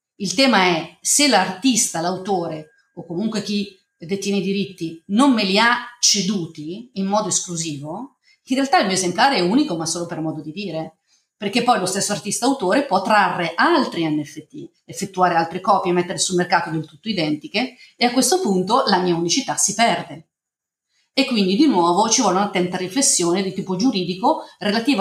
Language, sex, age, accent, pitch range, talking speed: Italian, female, 40-59, native, 175-225 Hz, 175 wpm